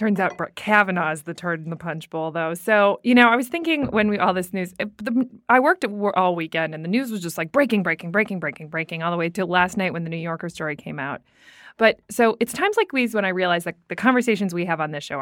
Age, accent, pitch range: 20-39, American, 165-215 Hz